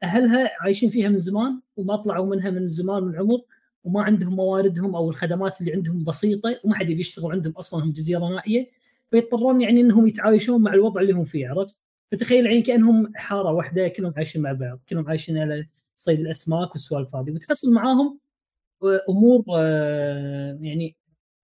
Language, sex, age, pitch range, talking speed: Arabic, female, 20-39, 160-220 Hz, 170 wpm